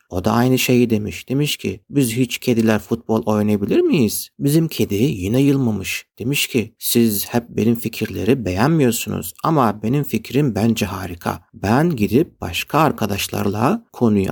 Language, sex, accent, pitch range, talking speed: Turkish, male, native, 100-125 Hz, 145 wpm